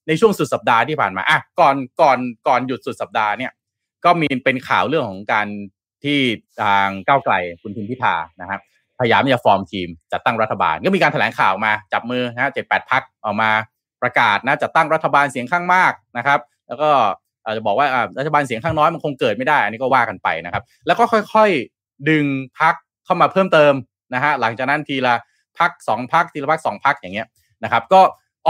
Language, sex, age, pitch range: Thai, male, 20-39, 120-175 Hz